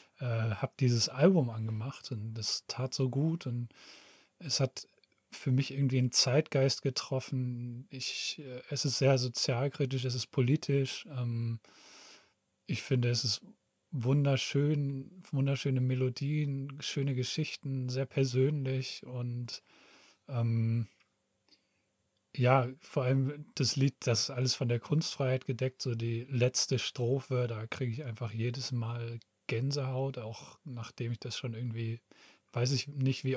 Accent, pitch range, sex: German, 120-140 Hz, male